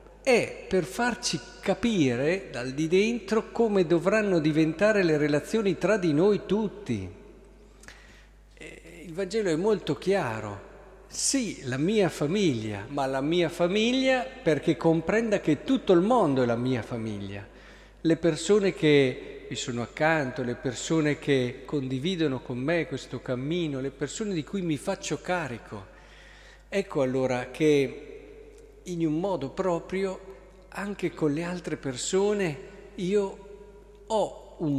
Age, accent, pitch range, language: 50-69, native, 130-195 Hz, Italian